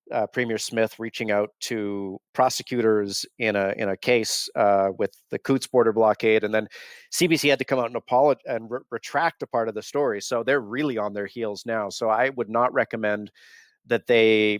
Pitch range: 110-130 Hz